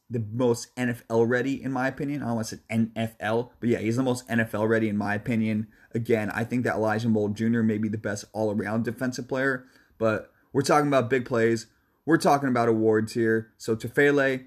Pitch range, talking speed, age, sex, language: 110-130 Hz, 205 wpm, 30-49, male, English